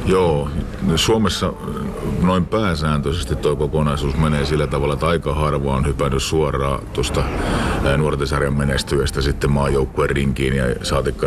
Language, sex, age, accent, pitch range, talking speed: Finnish, male, 50-69, native, 65-75 Hz, 120 wpm